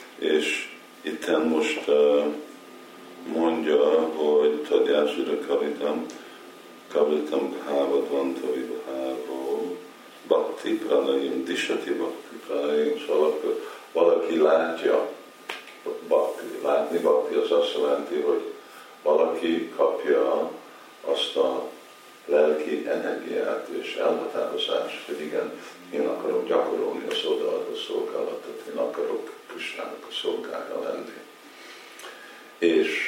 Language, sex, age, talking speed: Hungarian, male, 50-69, 95 wpm